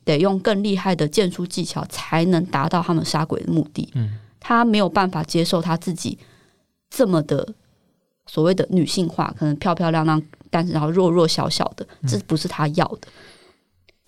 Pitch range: 160-195 Hz